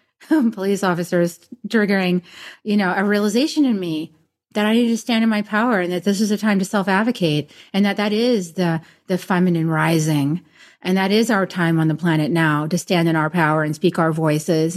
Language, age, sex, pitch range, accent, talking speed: English, 30-49, female, 165-215 Hz, American, 205 wpm